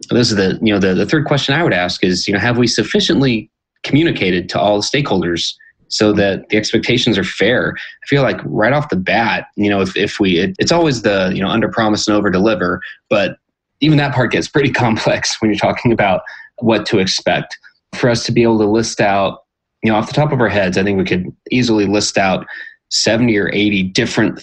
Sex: male